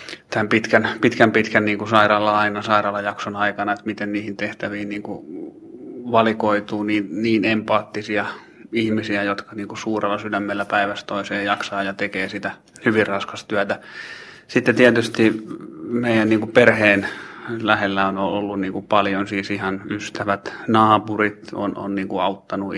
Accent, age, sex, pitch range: native, 30-49, male, 100-110 Hz